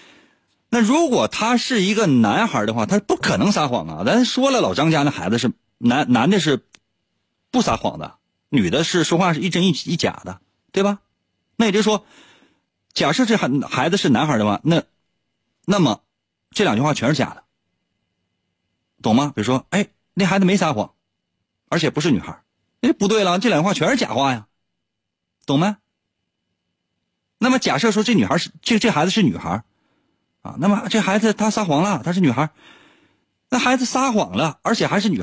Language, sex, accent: Chinese, male, native